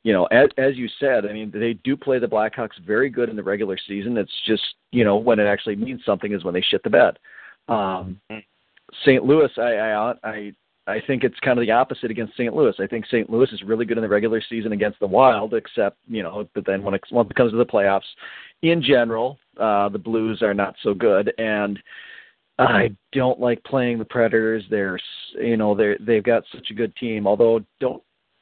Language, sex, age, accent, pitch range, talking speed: English, male, 40-59, American, 105-125 Hz, 220 wpm